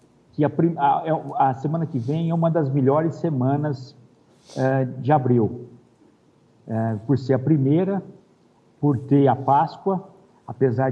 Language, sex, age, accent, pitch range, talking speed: Portuguese, male, 50-69, Brazilian, 125-150 Hz, 125 wpm